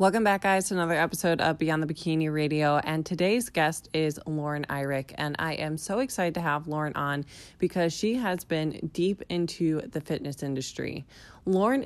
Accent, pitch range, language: American, 145-175 Hz, English